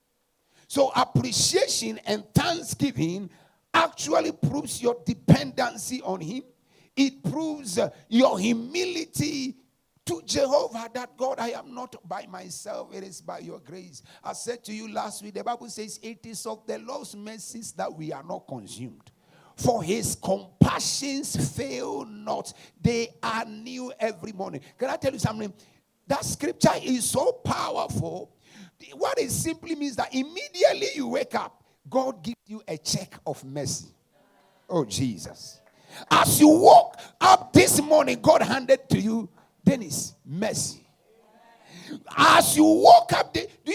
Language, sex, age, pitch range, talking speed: English, male, 50-69, 195-275 Hz, 145 wpm